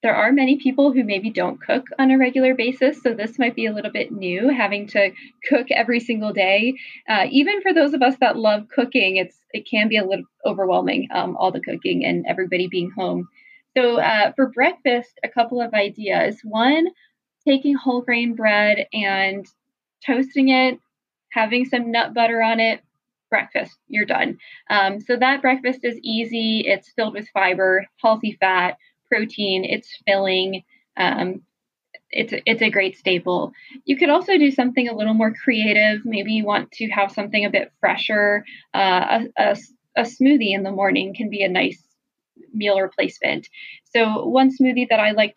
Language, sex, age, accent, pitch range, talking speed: English, female, 10-29, American, 200-260 Hz, 175 wpm